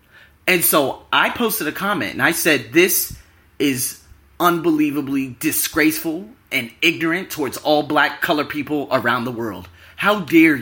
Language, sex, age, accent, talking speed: English, male, 30-49, American, 140 wpm